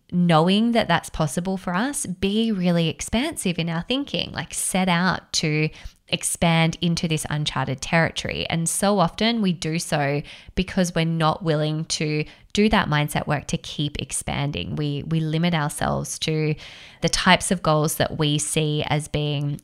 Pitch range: 150-185 Hz